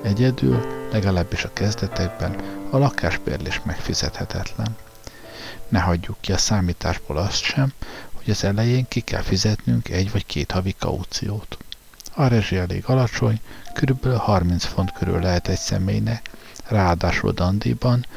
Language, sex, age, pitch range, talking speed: Hungarian, male, 60-79, 90-110 Hz, 125 wpm